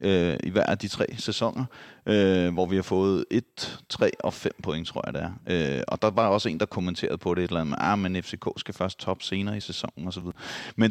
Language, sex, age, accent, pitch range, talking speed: Danish, male, 30-49, native, 95-110 Hz, 235 wpm